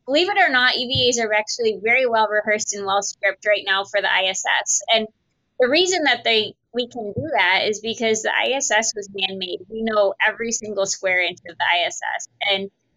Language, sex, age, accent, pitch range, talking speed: English, female, 20-39, American, 200-240 Hz, 200 wpm